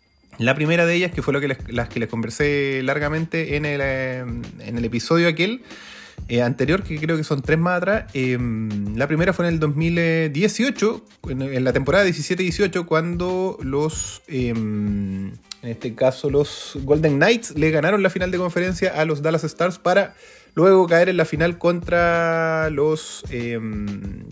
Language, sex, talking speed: Spanish, male, 170 wpm